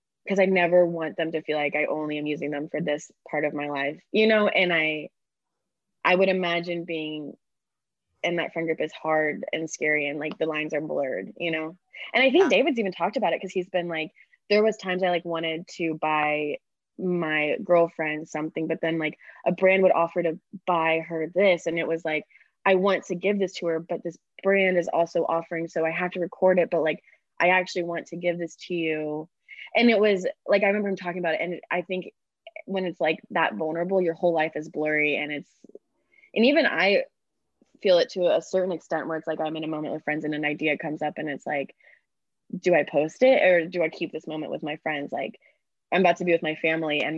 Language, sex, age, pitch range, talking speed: English, female, 20-39, 155-185 Hz, 235 wpm